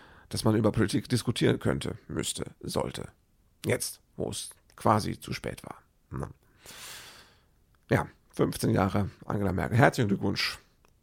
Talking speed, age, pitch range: 125 wpm, 40-59, 105-145 Hz